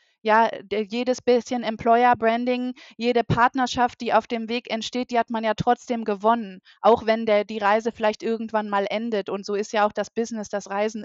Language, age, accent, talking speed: German, 20-39, German, 200 wpm